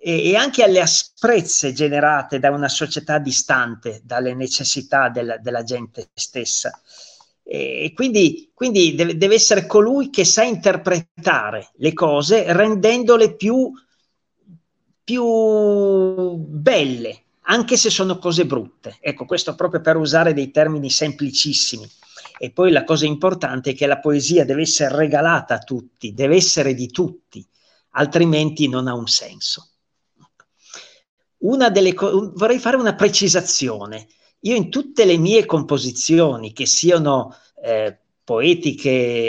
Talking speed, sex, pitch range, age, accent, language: 125 wpm, male, 135-195 Hz, 40-59, native, Italian